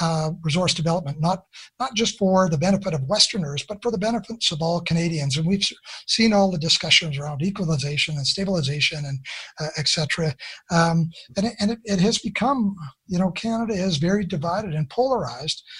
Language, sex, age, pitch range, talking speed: English, male, 50-69, 160-195 Hz, 185 wpm